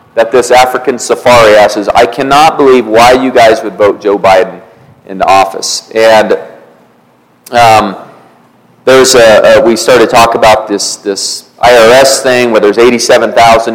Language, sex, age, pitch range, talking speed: English, male, 40-59, 110-130 Hz, 155 wpm